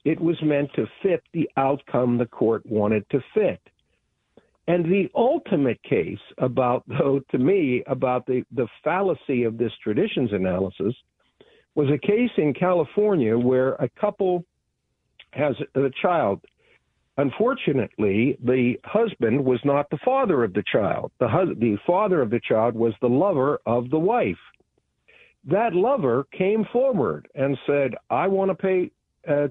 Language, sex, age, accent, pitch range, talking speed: English, male, 60-79, American, 125-195 Hz, 150 wpm